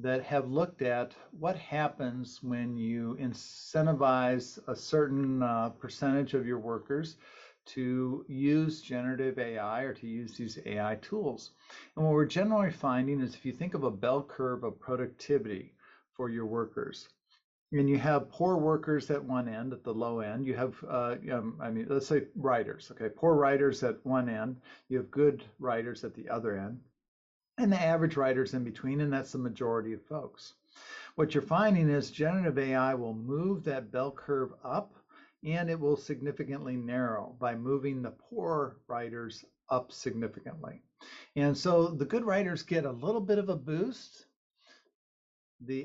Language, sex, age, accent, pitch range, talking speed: English, male, 50-69, American, 125-155 Hz, 170 wpm